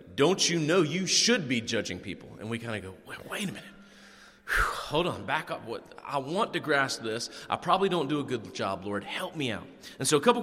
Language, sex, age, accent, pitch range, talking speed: English, male, 30-49, American, 115-170 Hz, 245 wpm